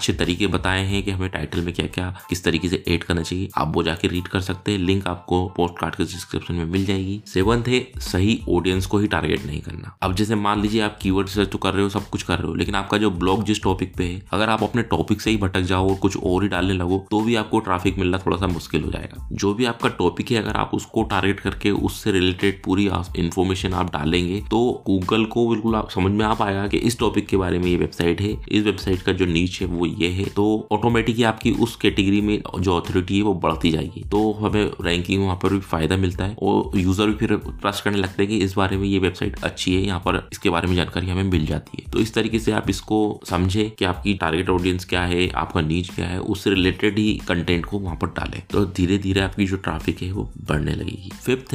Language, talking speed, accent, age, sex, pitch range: Hindi, 185 wpm, native, 20-39, male, 90-105 Hz